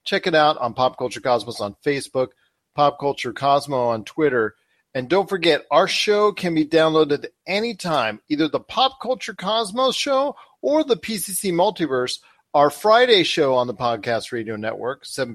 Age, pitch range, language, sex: 40-59, 125-175 Hz, English, male